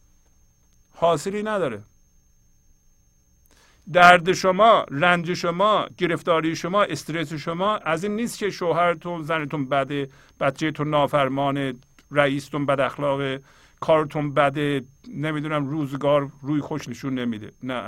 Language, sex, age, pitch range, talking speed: English, male, 50-69, 125-175 Hz, 105 wpm